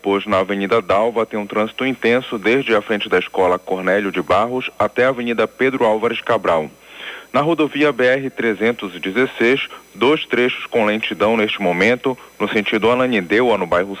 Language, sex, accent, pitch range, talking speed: Portuguese, male, Brazilian, 105-130 Hz, 150 wpm